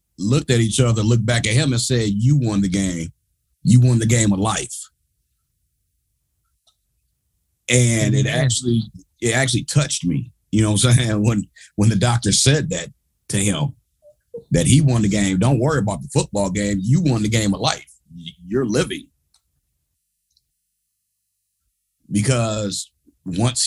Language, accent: English, American